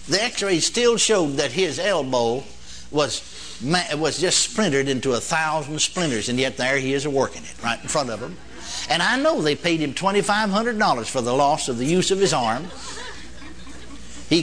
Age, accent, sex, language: 60-79, American, male, English